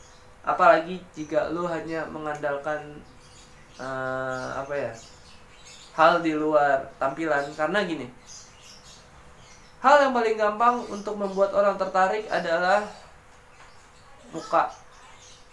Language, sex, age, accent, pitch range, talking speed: Indonesian, male, 20-39, native, 135-195 Hz, 95 wpm